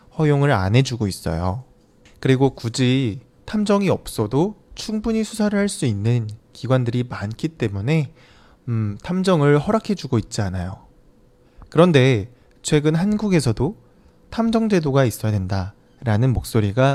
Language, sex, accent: Chinese, male, Korean